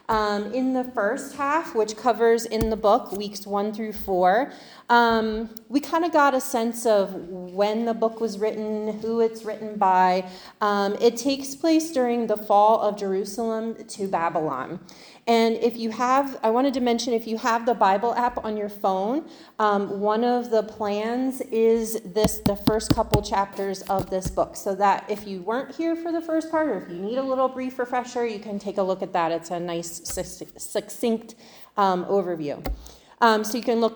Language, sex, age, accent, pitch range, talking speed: English, female, 30-49, American, 195-240 Hz, 195 wpm